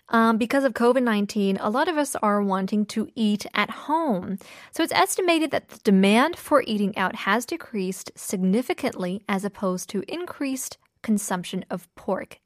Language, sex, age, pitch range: Korean, female, 20-39, 195-265 Hz